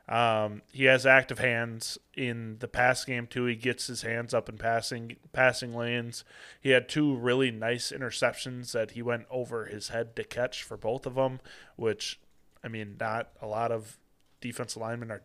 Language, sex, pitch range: English, male, 110-125 Hz